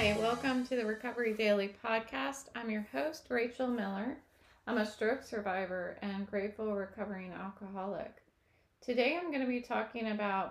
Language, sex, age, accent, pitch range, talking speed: English, female, 30-49, American, 175-215 Hz, 155 wpm